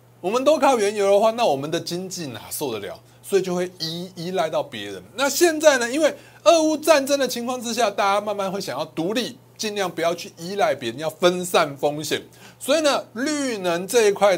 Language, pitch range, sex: Chinese, 170-245 Hz, male